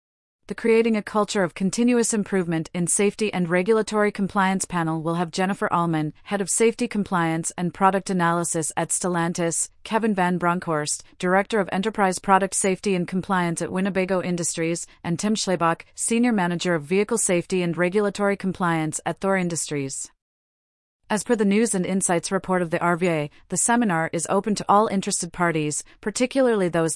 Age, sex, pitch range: 30-49, female, 170-200 Hz